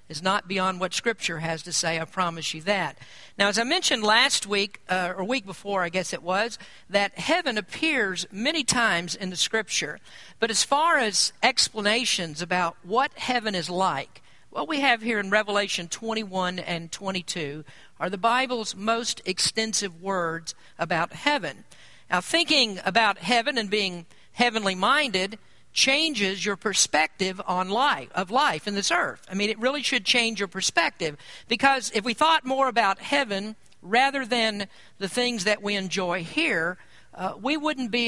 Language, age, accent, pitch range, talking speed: English, 50-69, American, 180-235 Hz, 165 wpm